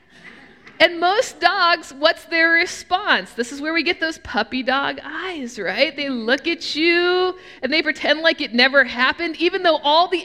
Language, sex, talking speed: English, female, 180 wpm